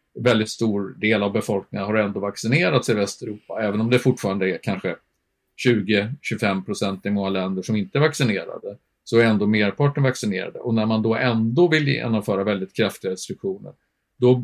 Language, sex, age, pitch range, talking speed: Swedish, male, 50-69, 105-125 Hz, 170 wpm